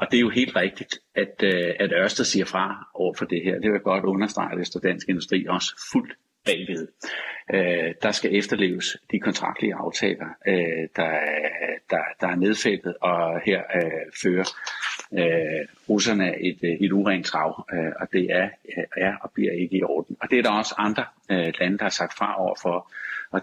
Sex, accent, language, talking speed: male, native, Danish, 195 wpm